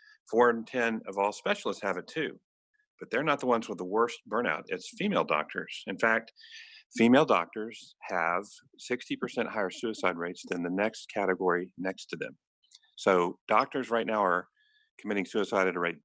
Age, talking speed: 50-69, 175 wpm